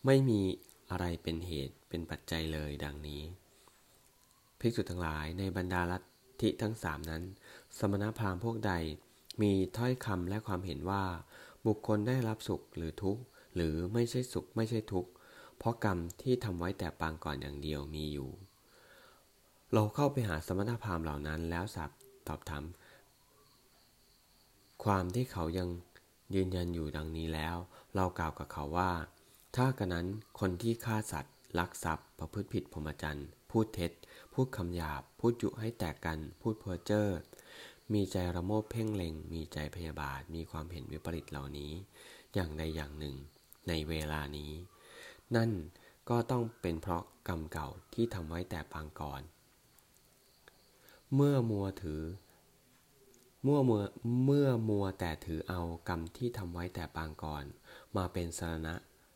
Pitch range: 80-105 Hz